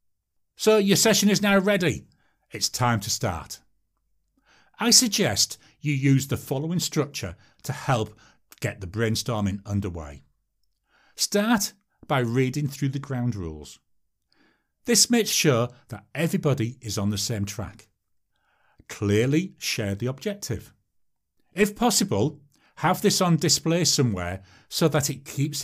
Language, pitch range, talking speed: English, 105-170 Hz, 130 wpm